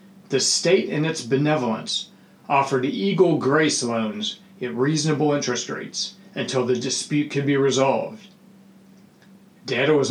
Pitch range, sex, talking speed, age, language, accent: 130-195 Hz, male, 125 wpm, 40-59, English, American